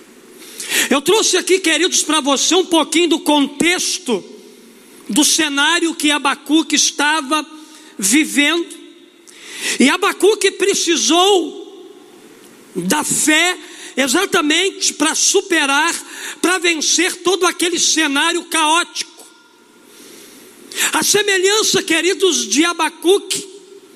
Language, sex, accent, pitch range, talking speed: Portuguese, male, Brazilian, 310-360 Hz, 90 wpm